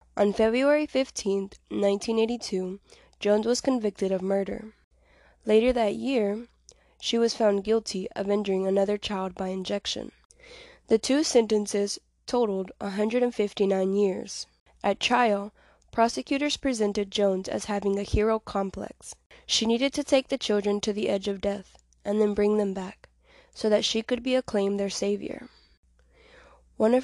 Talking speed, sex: 140 wpm, female